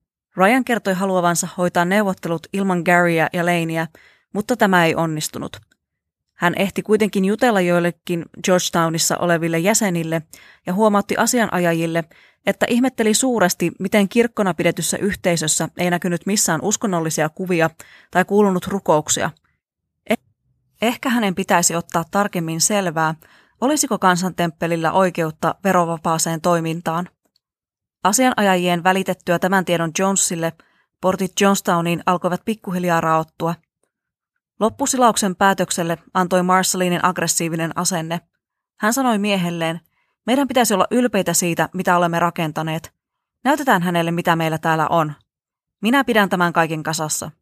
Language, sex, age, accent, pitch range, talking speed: Finnish, female, 20-39, native, 165-200 Hz, 110 wpm